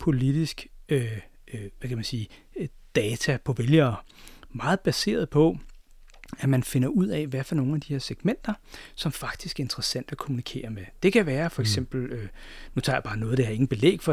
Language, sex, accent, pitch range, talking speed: Danish, male, native, 130-175 Hz, 210 wpm